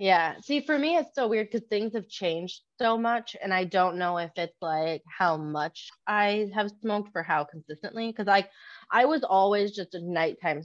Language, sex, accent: English, female, American